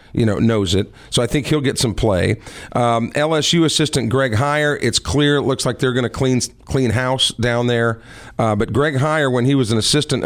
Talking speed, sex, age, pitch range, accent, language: 220 wpm, male, 40-59, 115-145 Hz, American, English